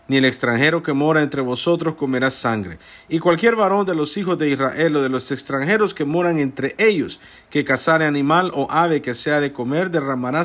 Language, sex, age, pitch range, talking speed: English, male, 50-69, 130-170 Hz, 200 wpm